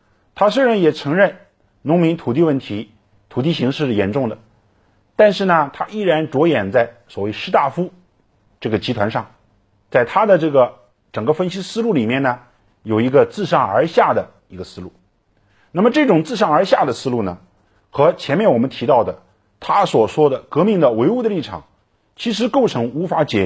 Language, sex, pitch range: Chinese, male, 100-150 Hz